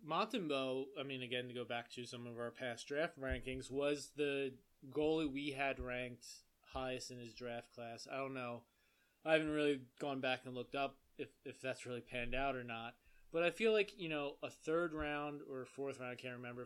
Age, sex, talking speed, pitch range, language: 20-39, male, 215 wpm, 125-140 Hz, English